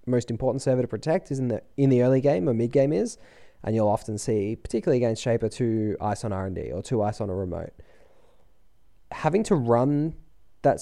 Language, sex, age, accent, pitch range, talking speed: English, male, 20-39, Australian, 95-125 Hz, 205 wpm